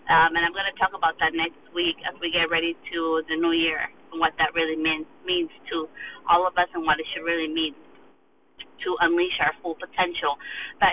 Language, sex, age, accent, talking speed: English, female, 30-49, American, 220 wpm